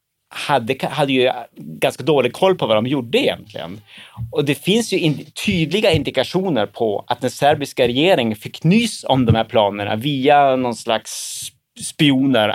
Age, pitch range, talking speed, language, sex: 30-49, 110-140 Hz, 160 wpm, Swedish, male